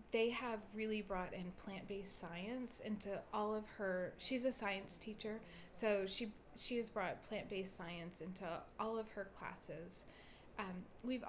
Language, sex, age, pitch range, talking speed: English, female, 30-49, 185-235 Hz, 155 wpm